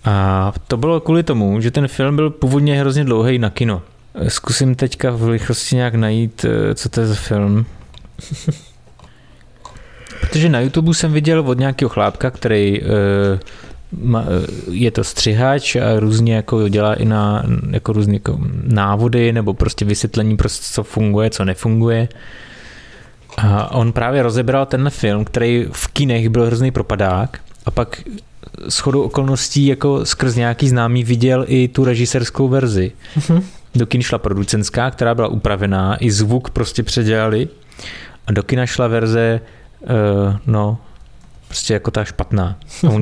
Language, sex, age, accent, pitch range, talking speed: Czech, male, 20-39, native, 105-130 Hz, 140 wpm